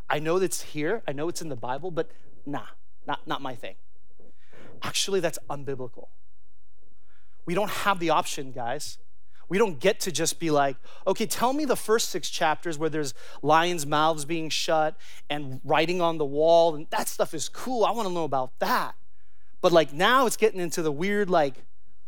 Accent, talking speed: American, 190 wpm